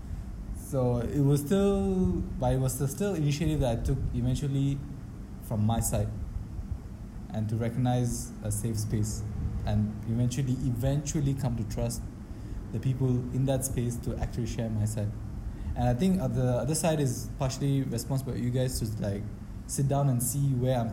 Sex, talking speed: male, 165 wpm